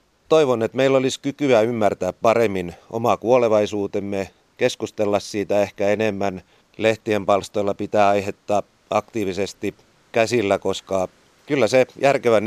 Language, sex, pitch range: Finnish, male, 95-115 Hz